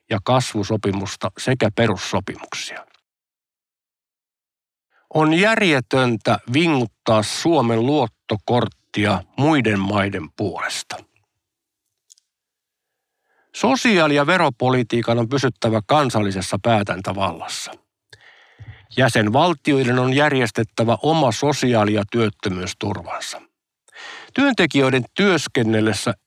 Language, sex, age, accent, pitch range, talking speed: Finnish, male, 50-69, native, 110-150 Hz, 65 wpm